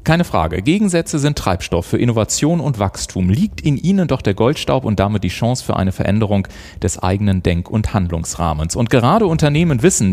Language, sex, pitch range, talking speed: German, male, 95-140 Hz, 185 wpm